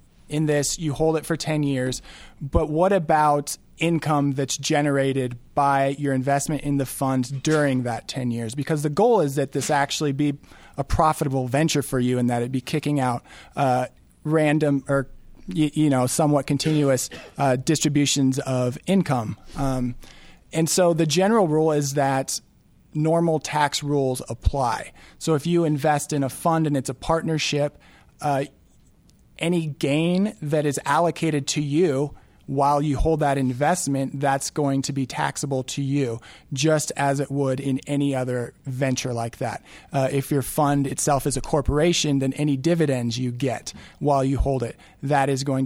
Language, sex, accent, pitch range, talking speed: English, male, American, 130-155 Hz, 170 wpm